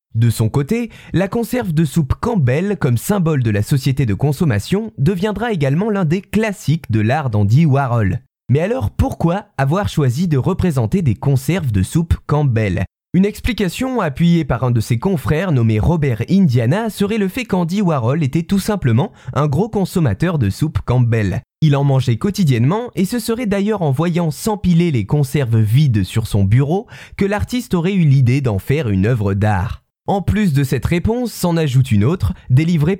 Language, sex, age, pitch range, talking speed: French, male, 20-39, 125-190 Hz, 180 wpm